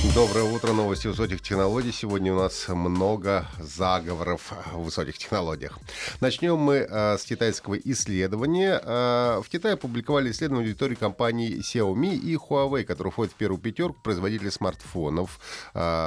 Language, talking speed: Russian, 140 wpm